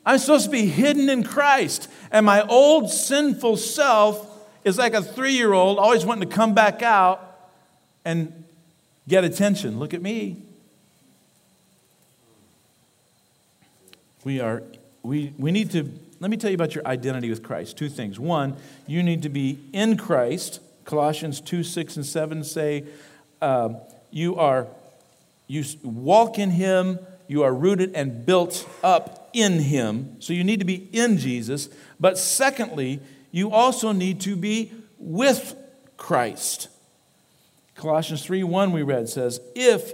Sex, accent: male, American